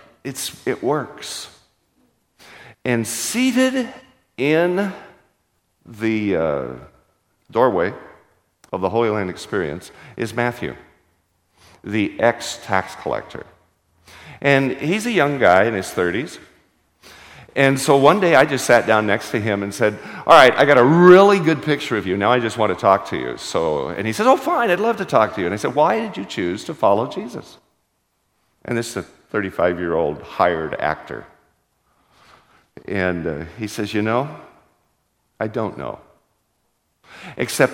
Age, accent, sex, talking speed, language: 50-69, American, male, 155 wpm, English